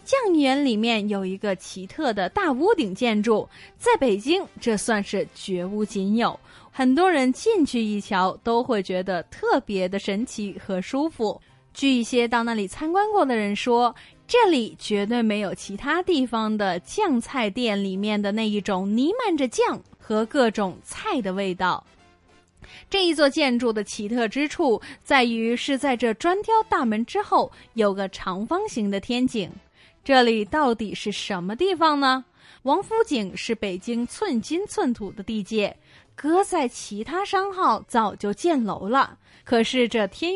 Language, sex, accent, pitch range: Chinese, female, native, 205-315 Hz